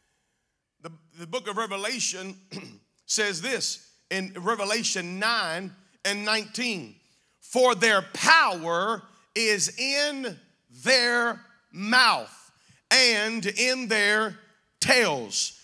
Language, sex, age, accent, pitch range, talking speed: English, male, 40-59, American, 200-240 Hz, 85 wpm